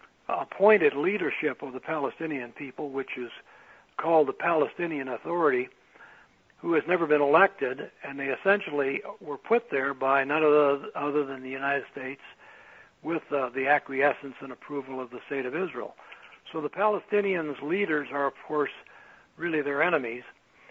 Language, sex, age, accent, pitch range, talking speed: English, male, 60-79, American, 135-155 Hz, 150 wpm